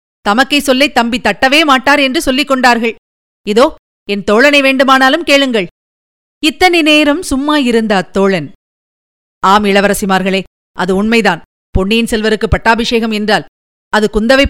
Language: Tamil